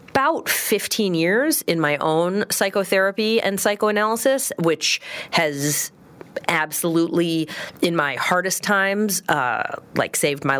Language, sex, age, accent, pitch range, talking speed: English, female, 30-49, American, 155-210 Hz, 115 wpm